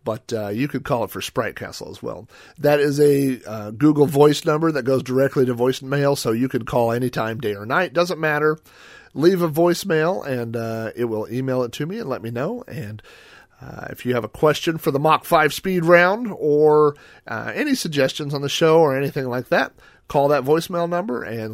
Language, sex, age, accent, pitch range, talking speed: English, male, 40-59, American, 120-160 Hz, 215 wpm